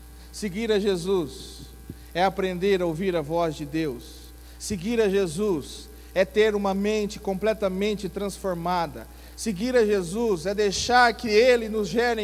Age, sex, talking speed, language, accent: 40-59, male, 140 wpm, Portuguese, Brazilian